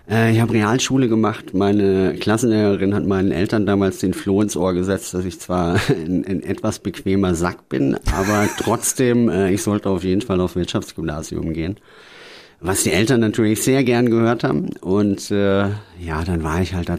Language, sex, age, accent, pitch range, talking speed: German, male, 30-49, German, 90-115 Hz, 175 wpm